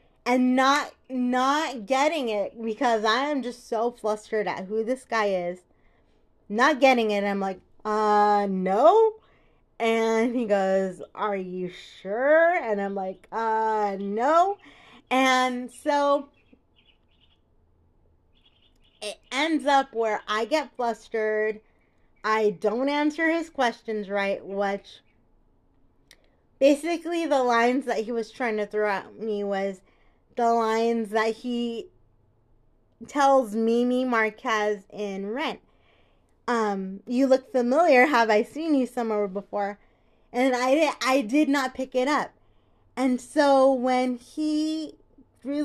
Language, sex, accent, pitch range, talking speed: English, female, American, 195-260 Hz, 125 wpm